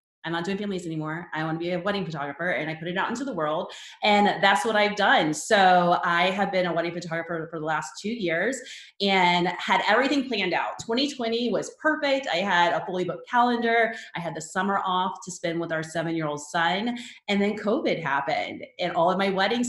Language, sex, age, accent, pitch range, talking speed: English, female, 30-49, American, 165-220 Hz, 215 wpm